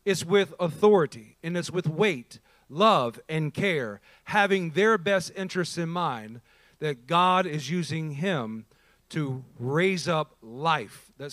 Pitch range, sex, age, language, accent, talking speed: 165-240 Hz, male, 40-59, English, American, 140 wpm